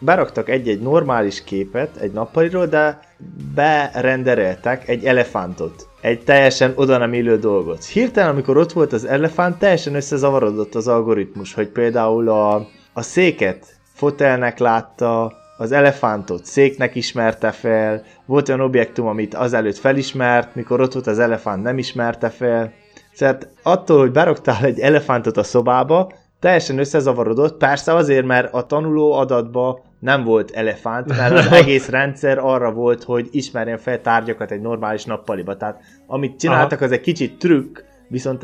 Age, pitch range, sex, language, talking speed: 20-39, 115-145 Hz, male, Hungarian, 145 wpm